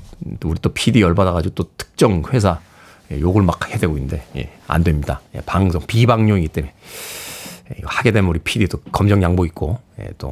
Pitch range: 120-190 Hz